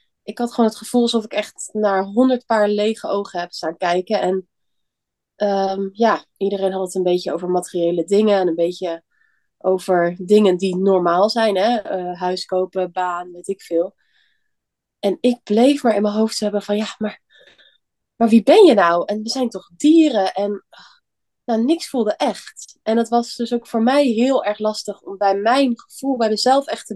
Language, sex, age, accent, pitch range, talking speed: Dutch, female, 20-39, Dutch, 190-230 Hz, 195 wpm